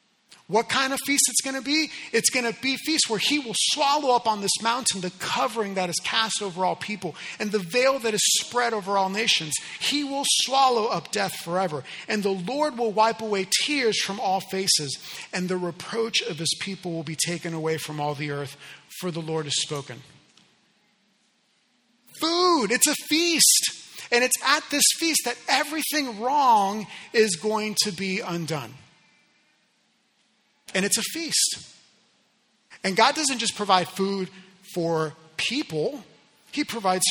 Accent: American